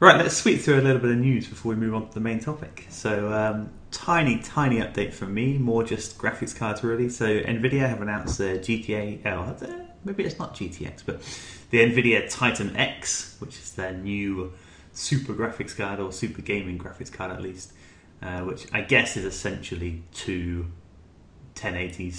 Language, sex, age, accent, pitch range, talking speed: English, male, 20-39, British, 90-110 Hz, 180 wpm